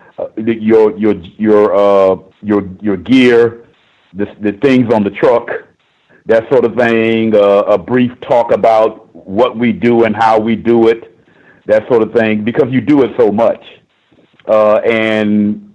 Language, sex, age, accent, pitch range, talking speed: English, male, 50-69, American, 105-125 Hz, 170 wpm